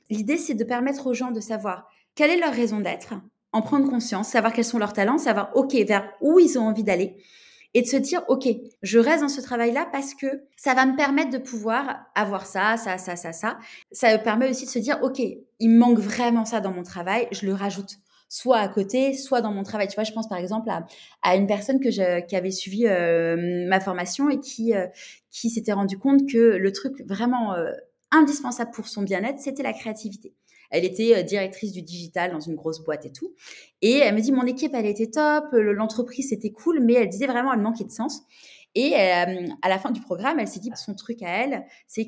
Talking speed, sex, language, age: 230 wpm, female, French, 20-39